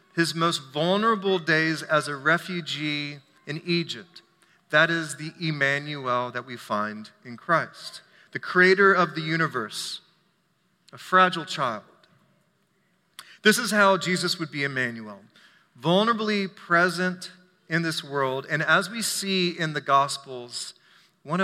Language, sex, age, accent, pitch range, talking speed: English, male, 40-59, American, 145-180 Hz, 130 wpm